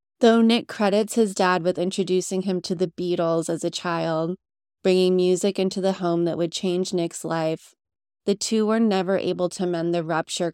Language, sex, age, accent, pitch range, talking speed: English, female, 20-39, American, 165-195 Hz, 190 wpm